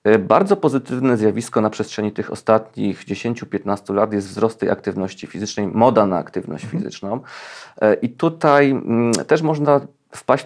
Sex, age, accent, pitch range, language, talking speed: male, 40-59, native, 105-135 Hz, Polish, 130 wpm